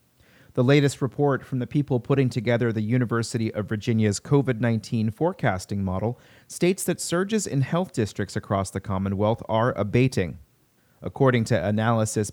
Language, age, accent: English, 30-49, American